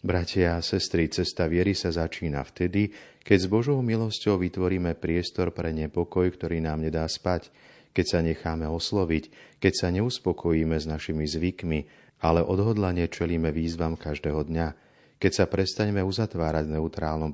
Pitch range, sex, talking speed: 80-95 Hz, male, 145 wpm